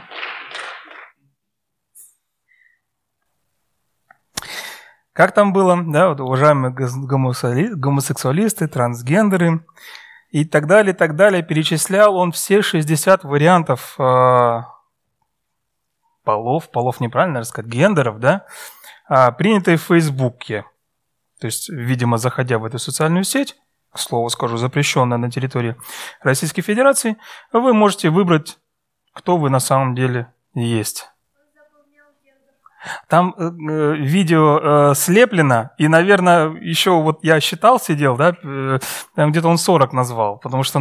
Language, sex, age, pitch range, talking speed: Russian, male, 30-49, 130-180 Hz, 105 wpm